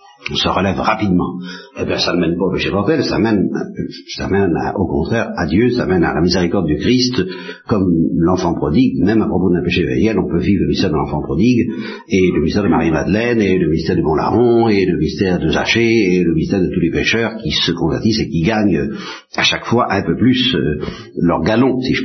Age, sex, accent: 60-79, male, French